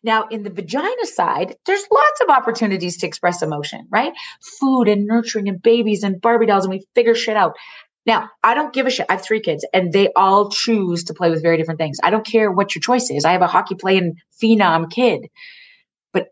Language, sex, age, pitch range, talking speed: English, female, 30-49, 165-220 Hz, 220 wpm